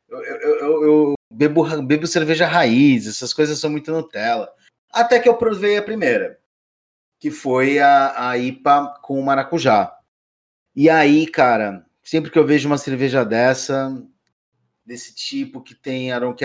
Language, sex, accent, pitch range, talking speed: Portuguese, male, Brazilian, 125-160 Hz, 145 wpm